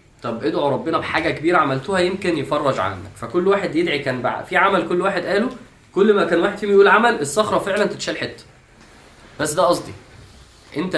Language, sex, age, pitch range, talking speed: Arabic, male, 20-39, 110-150 Hz, 185 wpm